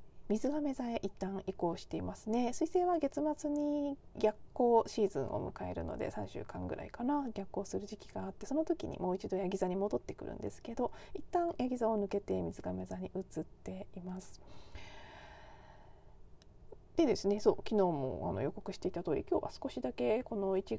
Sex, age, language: female, 40-59, Japanese